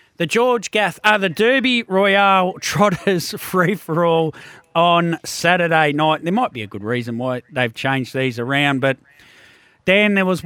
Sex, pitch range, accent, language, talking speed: male, 135-170 Hz, Australian, English, 155 wpm